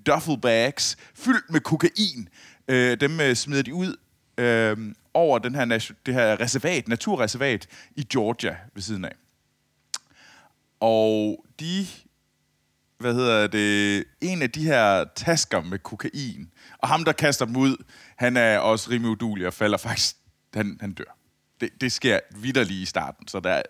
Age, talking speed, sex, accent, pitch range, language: 30-49, 140 wpm, male, native, 95-125 Hz, Danish